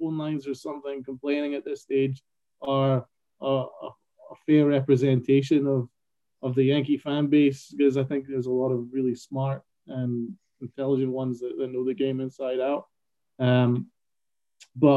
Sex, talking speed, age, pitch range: male, 165 wpm, 20-39, 130-155 Hz